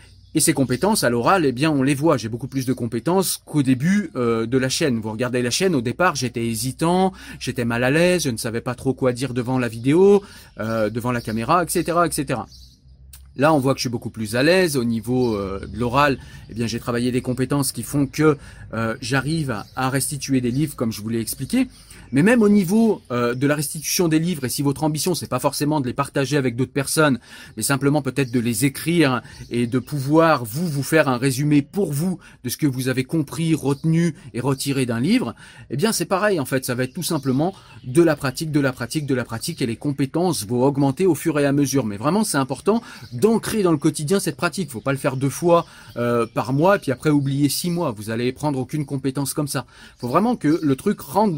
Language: French